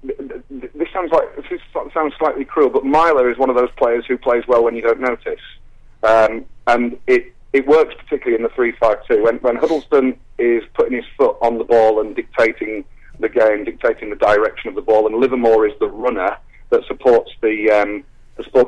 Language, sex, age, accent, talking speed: English, male, 40-59, British, 190 wpm